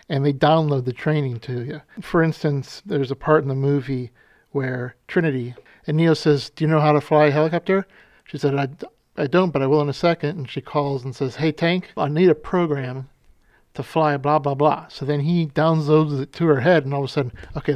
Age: 50-69